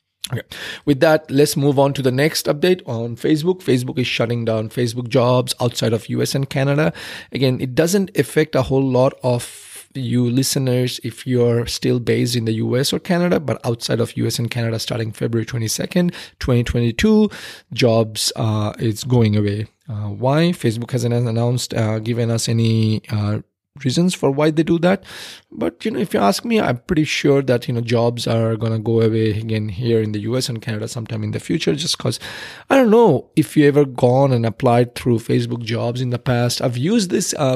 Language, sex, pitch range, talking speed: English, male, 115-140 Hz, 200 wpm